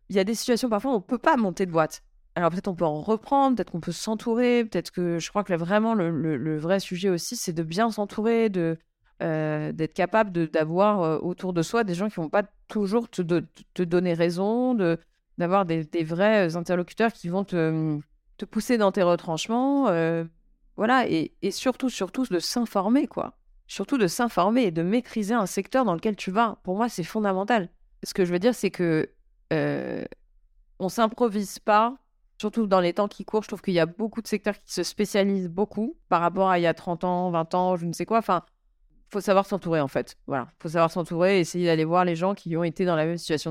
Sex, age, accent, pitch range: female, 30-49, French, 165-210 Hz